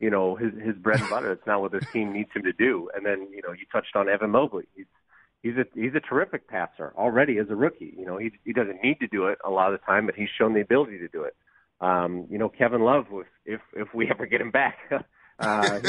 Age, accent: 40-59, American